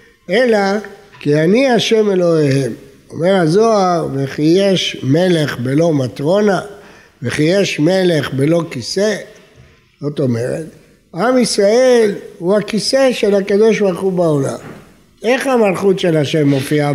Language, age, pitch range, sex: Hebrew, 60-79, 160-220 Hz, male